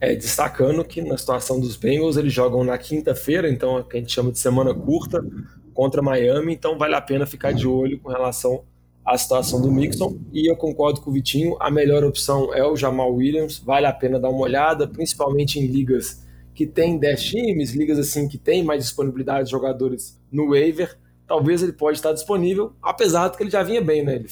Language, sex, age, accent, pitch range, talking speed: Portuguese, male, 20-39, Brazilian, 130-155 Hz, 210 wpm